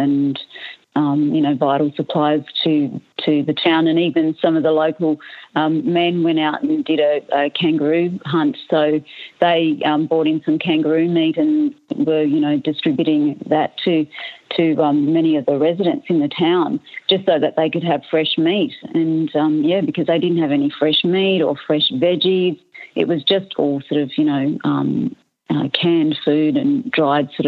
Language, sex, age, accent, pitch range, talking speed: English, female, 40-59, Australian, 150-175 Hz, 190 wpm